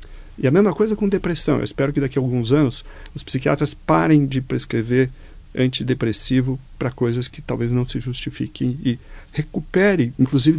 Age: 50-69